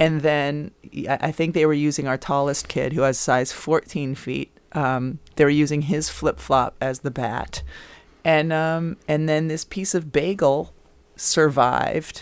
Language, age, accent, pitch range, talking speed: English, 30-49, American, 130-160 Hz, 155 wpm